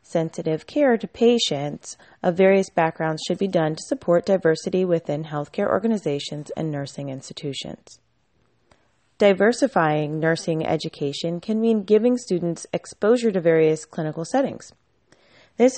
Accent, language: American, English